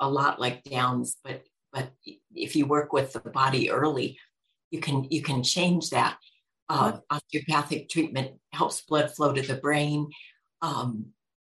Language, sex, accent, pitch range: English, female, American, 130-150 Hz